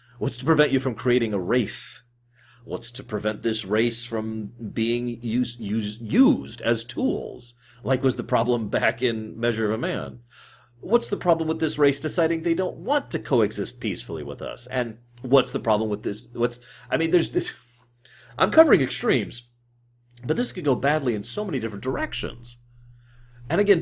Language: English